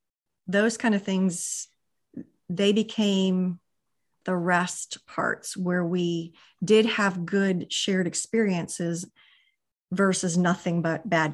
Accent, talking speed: American, 105 wpm